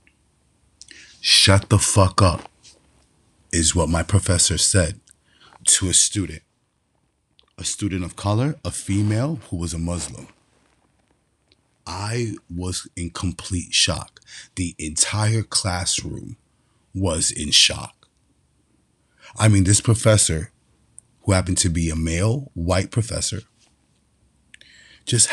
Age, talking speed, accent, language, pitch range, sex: 30-49, 110 wpm, American, English, 85-105 Hz, male